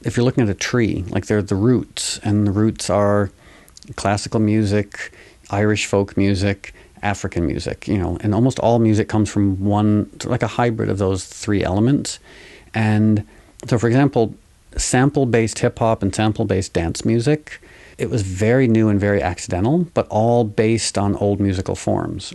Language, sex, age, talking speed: English, male, 50-69, 170 wpm